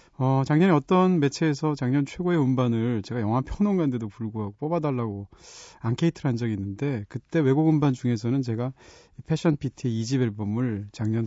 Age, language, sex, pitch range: 30-49, Korean, male, 115-165 Hz